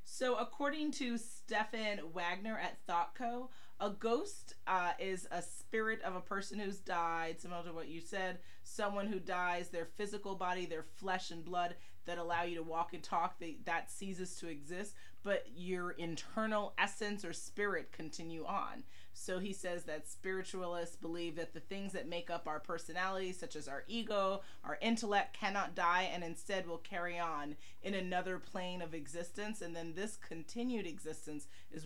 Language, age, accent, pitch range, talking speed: English, 30-49, American, 165-200 Hz, 170 wpm